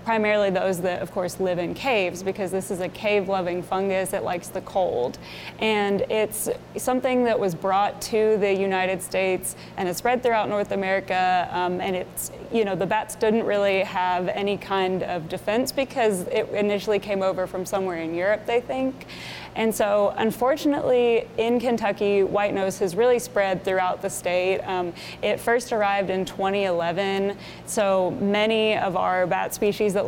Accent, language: American, English